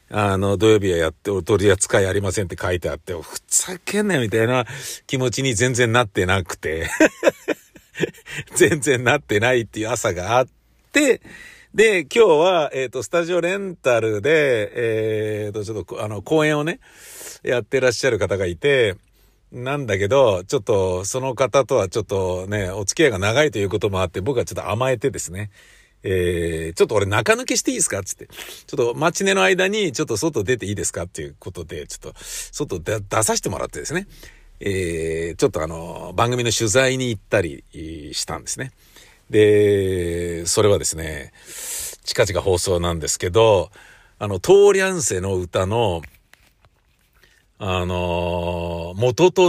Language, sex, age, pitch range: Japanese, male, 50-69, 95-155 Hz